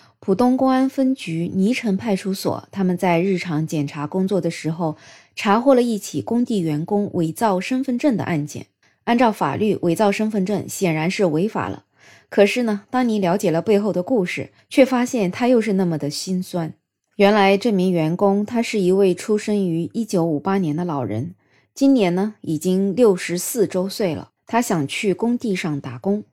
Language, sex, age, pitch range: Chinese, female, 20-39, 175-230 Hz